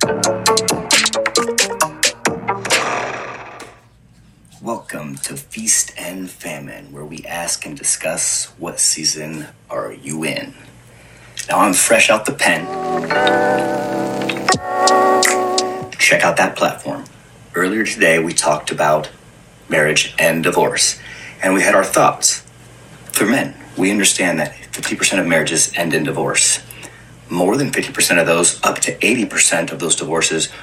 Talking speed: 120 wpm